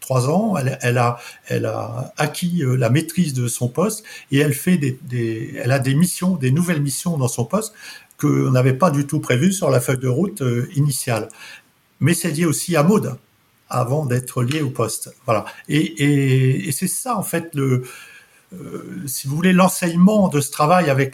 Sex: male